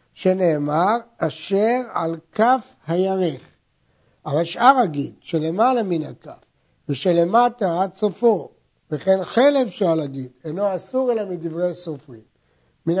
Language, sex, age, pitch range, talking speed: Hebrew, male, 60-79, 155-220 Hz, 110 wpm